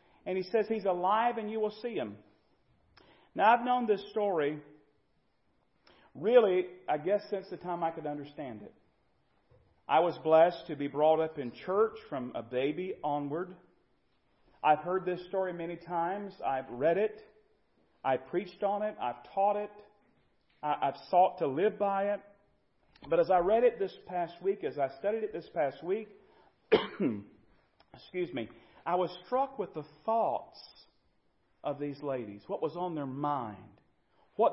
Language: English